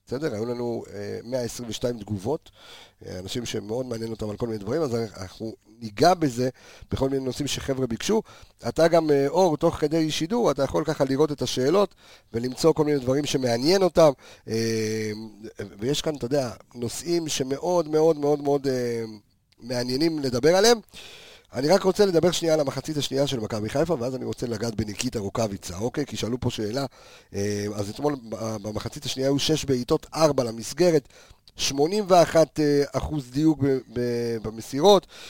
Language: Hebrew